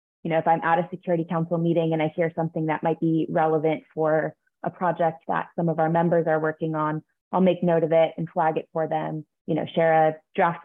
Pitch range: 160-180 Hz